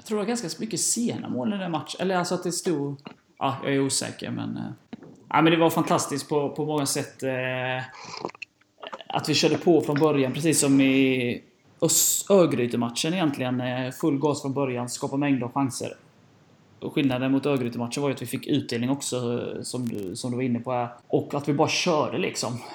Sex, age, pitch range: male, 20-39, 120-140 Hz